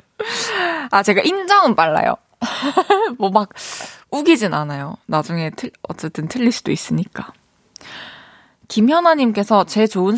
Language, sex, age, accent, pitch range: Korean, female, 20-39, native, 175-250 Hz